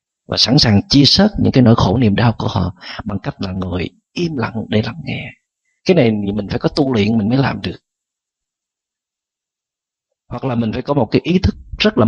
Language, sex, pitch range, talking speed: Vietnamese, male, 100-140 Hz, 220 wpm